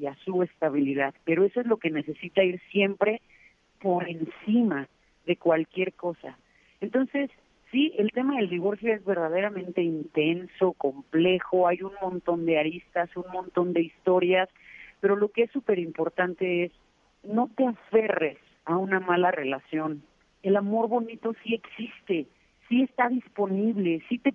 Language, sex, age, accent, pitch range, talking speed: Spanish, female, 40-59, Mexican, 170-210 Hz, 150 wpm